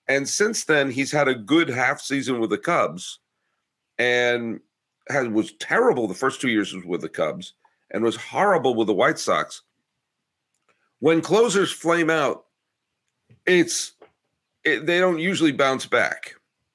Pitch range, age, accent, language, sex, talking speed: 100-135 Hz, 50-69, American, English, male, 145 wpm